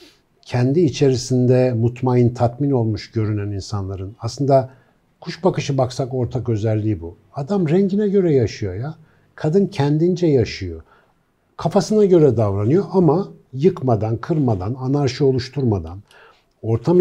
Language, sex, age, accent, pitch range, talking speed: Turkish, male, 60-79, native, 120-165 Hz, 110 wpm